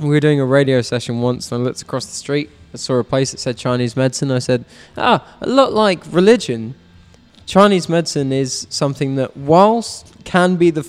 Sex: male